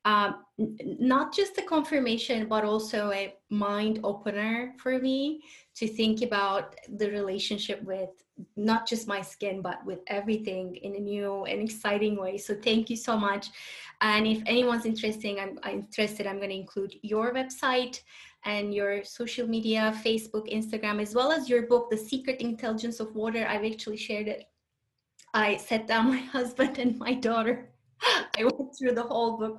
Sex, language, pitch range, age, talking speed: female, English, 215-255 Hz, 20-39, 170 wpm